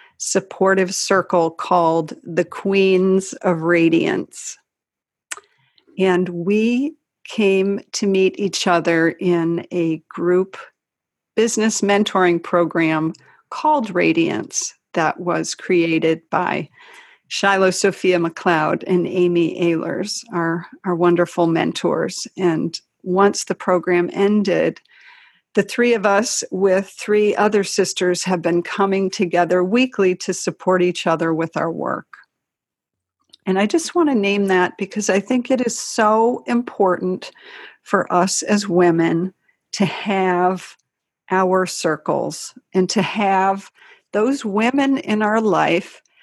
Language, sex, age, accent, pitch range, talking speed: English, female, 50-69, American, 175-215 Hz, 120 wpm